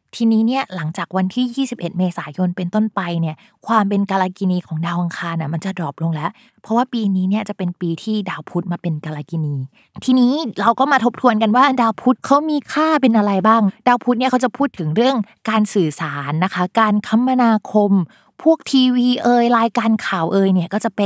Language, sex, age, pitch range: Thai, female, 20-39, 175-230 Hz